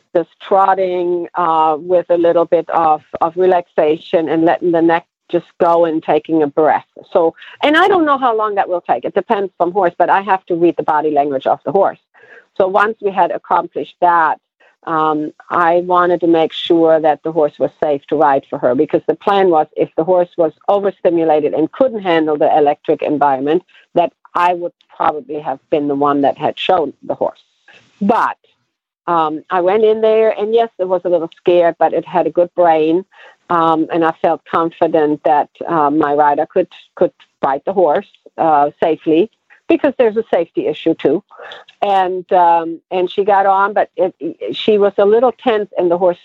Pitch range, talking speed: 155-190 Hz, 195 wpm